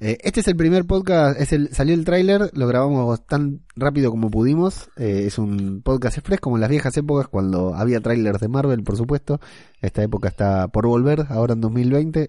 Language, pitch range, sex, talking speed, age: Spanish, 110-145 Hz, male, 200 wpm, 20-39